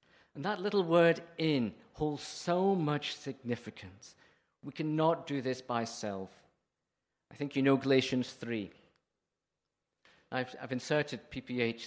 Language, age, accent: English, 50-69, British